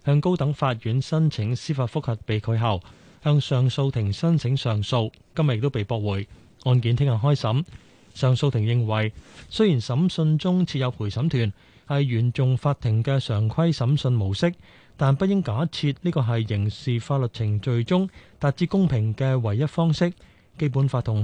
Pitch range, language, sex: 115-145 Hz, Chinese, male